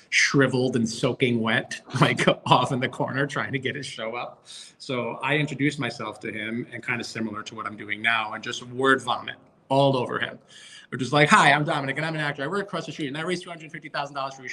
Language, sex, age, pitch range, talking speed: English, male, 30-49, 120-150 Hz, 255 wpm